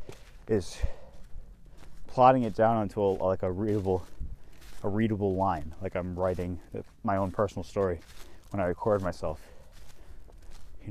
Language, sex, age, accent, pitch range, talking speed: English, male, 20-39, American, 85-115 Hz, 130 wpm